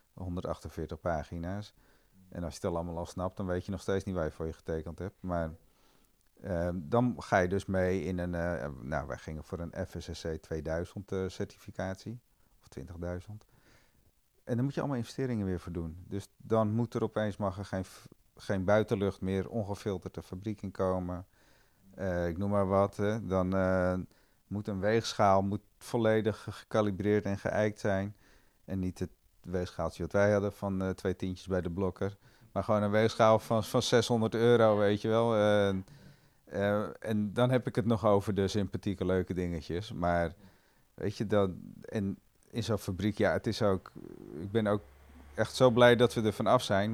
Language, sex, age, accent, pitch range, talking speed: Dutch, male, 40-59, Dutch, 90-110 Hz, 185 wpm